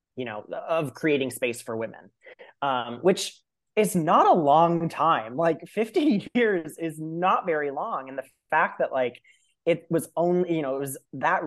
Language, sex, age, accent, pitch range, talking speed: English, male, 20-39, American, 120-155 Hz, 180 wpm